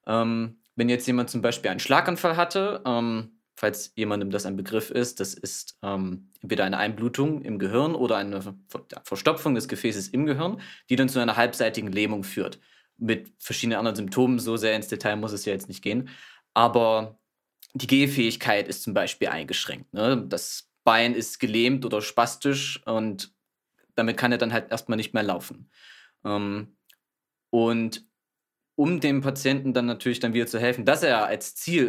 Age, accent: 20-39, German